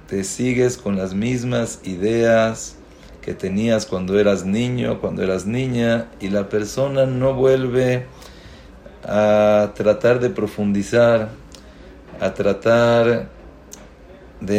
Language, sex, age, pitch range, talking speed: English, male, 40-59, 105-130 Hz, 105 wpm